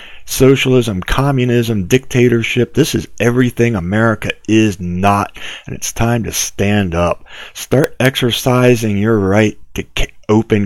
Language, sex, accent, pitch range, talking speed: English, male, American, 95-125 Hz, 120 wpm